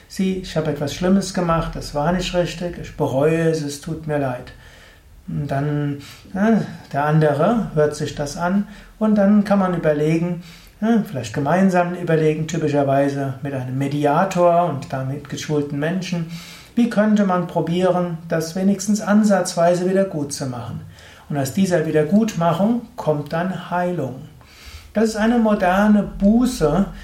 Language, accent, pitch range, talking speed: German, German, 150-195 Hz, 145 wpm